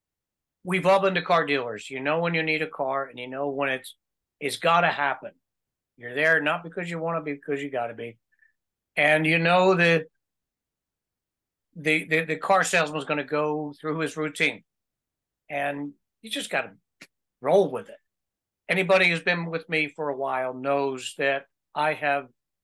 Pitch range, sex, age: 140-180 Hz, male, 60-79